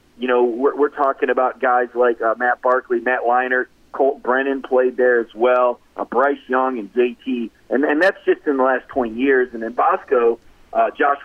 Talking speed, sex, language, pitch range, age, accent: 205 wpm, male, English, 115-140 Hz, 40-59, American